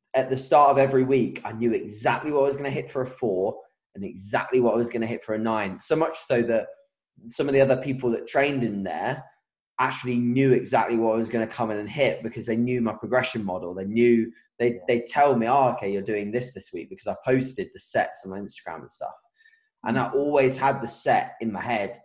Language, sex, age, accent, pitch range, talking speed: English, male, 20-39, British, 110-135 Hz, 250 wpm